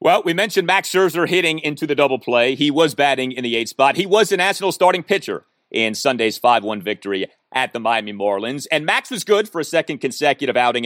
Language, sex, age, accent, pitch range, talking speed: English, male, 30-49, American, 115-170 Hz, 220 wpm